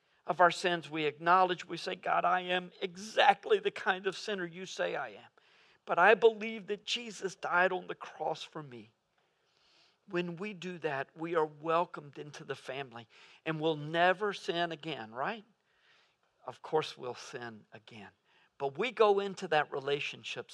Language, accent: English, American